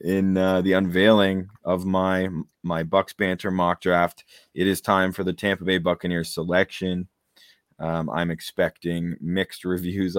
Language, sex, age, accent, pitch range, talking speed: English, male, 20-39, American, 85-95 Hz, 145 wpm